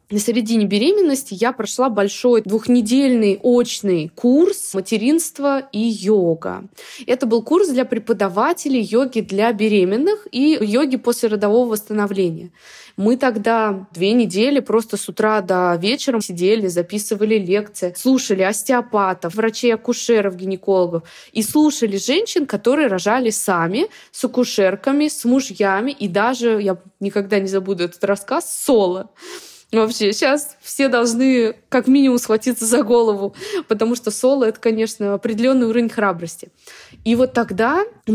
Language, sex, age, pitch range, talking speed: Russian, female, 20-39, 195-250 Hz, 130 wpm